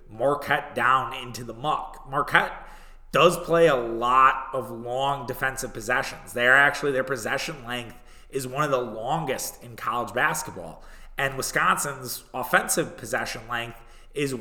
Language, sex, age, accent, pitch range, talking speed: English, male, 30-49, American, 125-145 Hz, 135 wpm